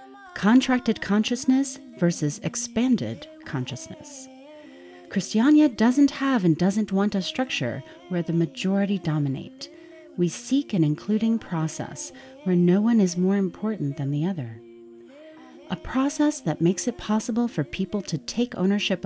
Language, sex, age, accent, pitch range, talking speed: English, female, 40-59, American, 160-250 Hz, 130 wpm